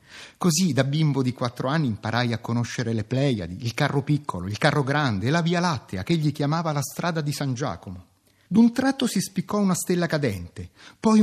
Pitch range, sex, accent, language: 120-175 Hz, male, native, Italian